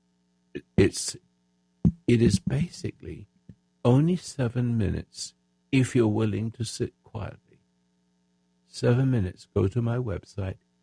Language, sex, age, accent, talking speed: English, male, 60-79, American, 110 wpm